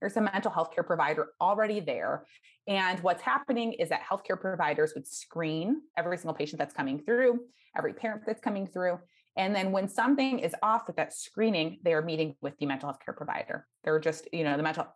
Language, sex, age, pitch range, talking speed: English, female, 20-39, 160-215 Hz, 210 wpm